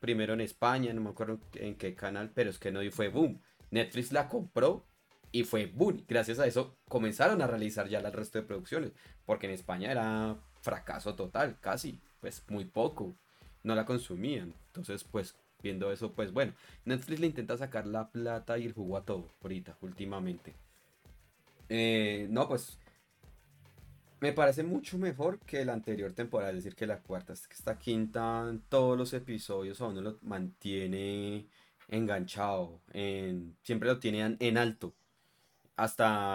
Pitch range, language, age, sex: 100-125 Hz, Spanish, 30-49, male